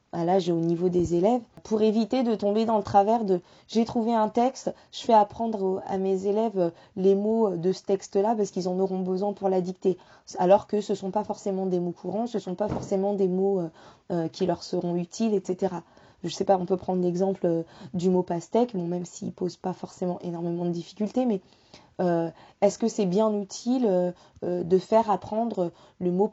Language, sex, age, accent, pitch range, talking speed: French, female, 20-39, French, 175-210 Hz, 225 wpm